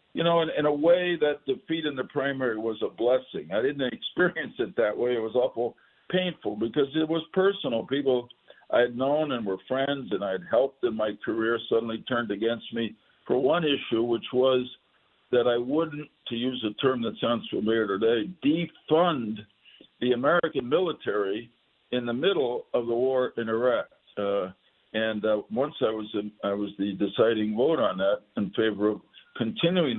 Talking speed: 180 wpm